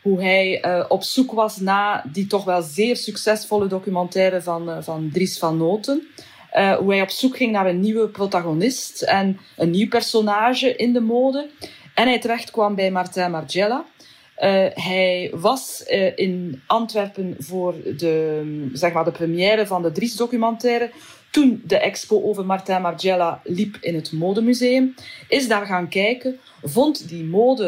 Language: Dutch